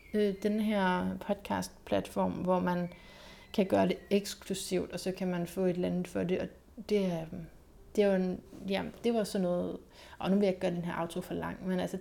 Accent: native